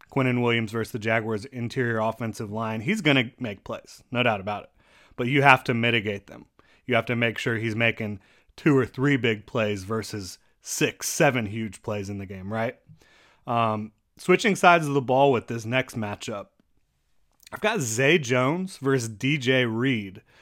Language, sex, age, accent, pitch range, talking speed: English, male, 30-49, American, 115-135 Hz, 180 wpm